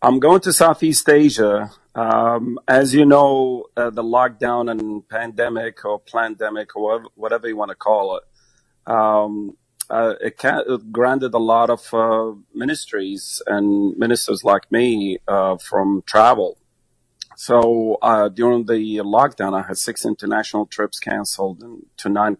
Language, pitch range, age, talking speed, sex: English, 105-115 Hz, 40-59, 145 wpm, male